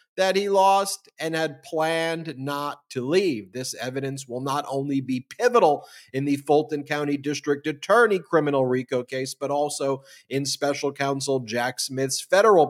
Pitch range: 135-175 Hz